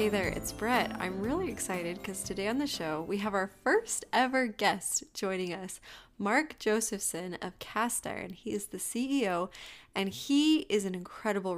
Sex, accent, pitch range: female, American, 180-230 Hz